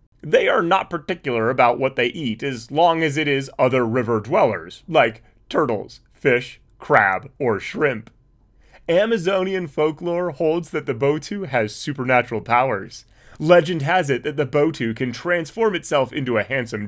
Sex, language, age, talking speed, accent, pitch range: male, English, 30-49, 155 wpm, American, 125-175 Hz